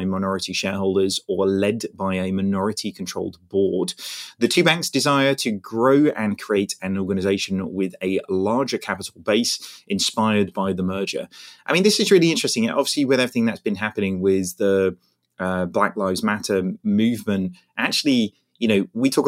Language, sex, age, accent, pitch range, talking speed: English, male, 30-49, British, 95-130 Hz, 160 wpm